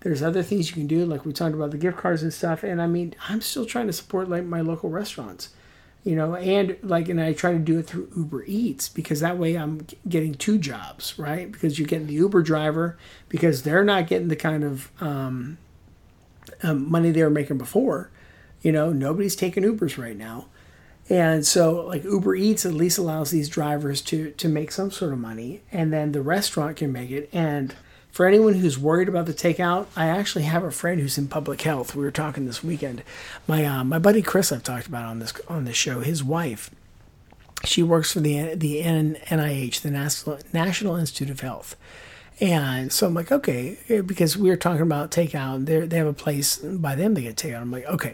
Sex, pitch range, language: male, 145-175 Hz, English